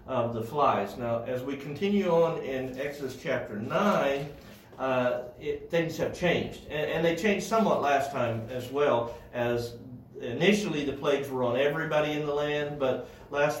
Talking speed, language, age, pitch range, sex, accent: 170 wpm, English, 50-69, 125-150 Hz, male, American